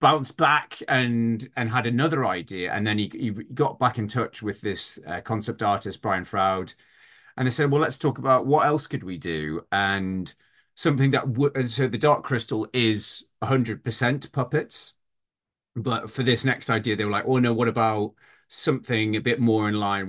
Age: 30-49